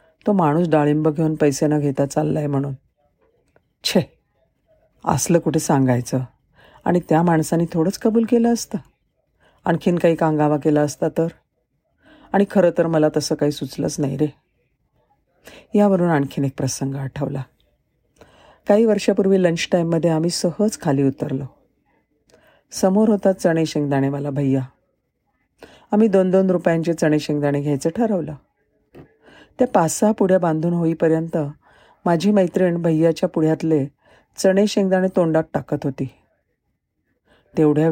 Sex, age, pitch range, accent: female, 40-59, 145-185 Hz, native